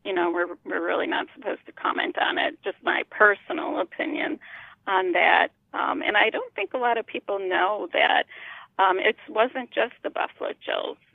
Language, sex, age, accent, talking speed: English, female, 40-59, American, 190 wpm